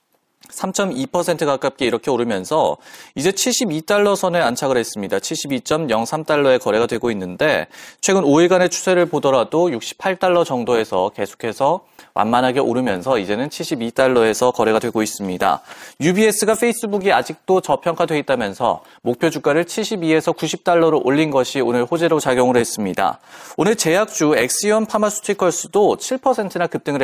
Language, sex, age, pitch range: Korean, male, 30-49, 155-210 Hz